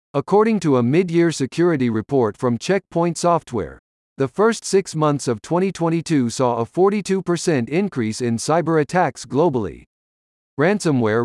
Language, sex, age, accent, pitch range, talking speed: English, male, 50-69, American, 125-175 Hz, 130 wpm